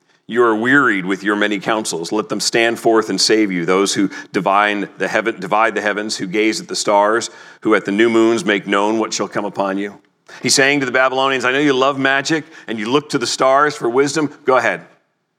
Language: English